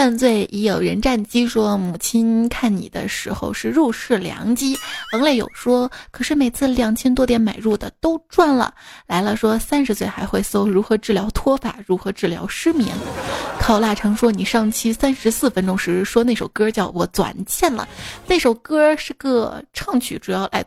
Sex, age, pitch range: female, 20-39, 210-270 Hz